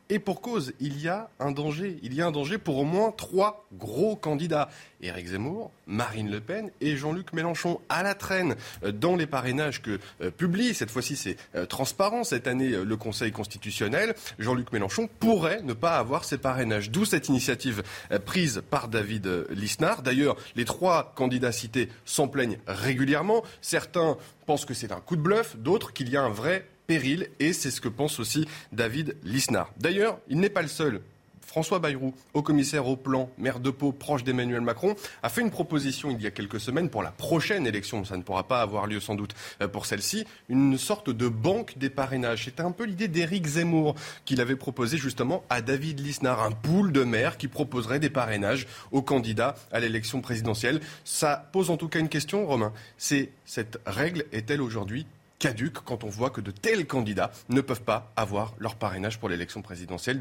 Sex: male